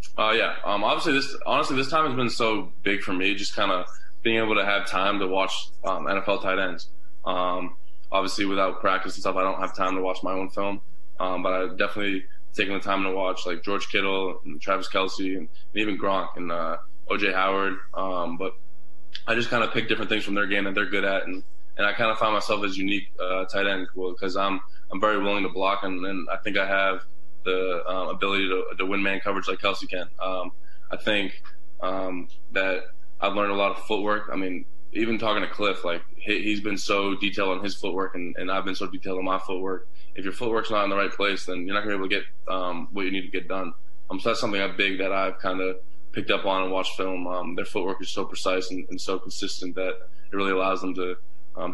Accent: American